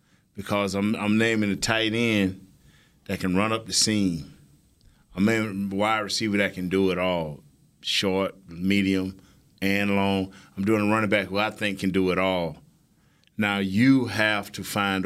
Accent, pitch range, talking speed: American, 100-130 Hz, 175 wpm